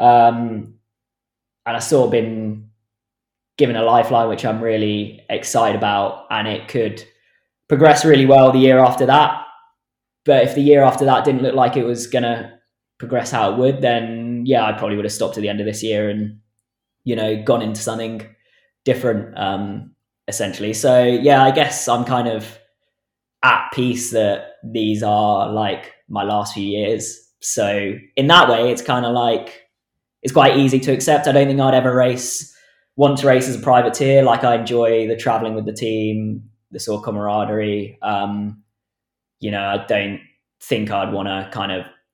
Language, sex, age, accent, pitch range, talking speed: English, male, 20-39, British, 105-125 Hz, 180 wpm